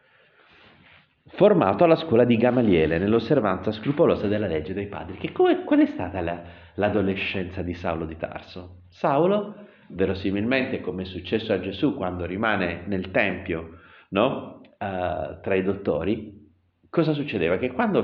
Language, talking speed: Italian, 140 wpm